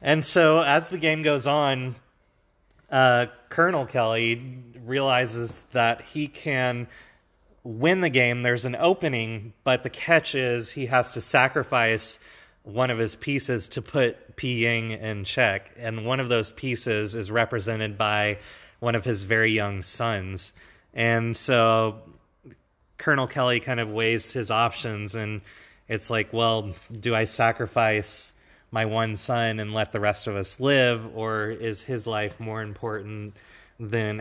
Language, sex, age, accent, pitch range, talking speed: English, male, 30-49, American, 105-125 Hz, 150 wpm